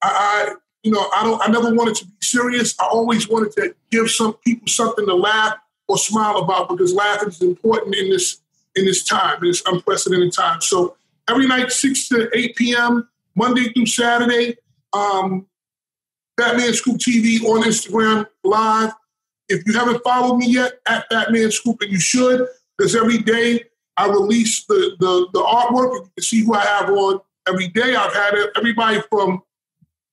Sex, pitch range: male, 195-240 Hz